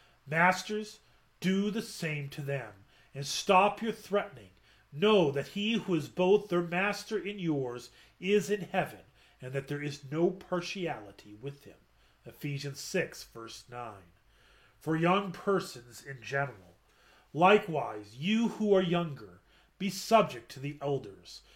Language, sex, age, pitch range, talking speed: English, male, 30-49, 135-195 Hz, 140 wpm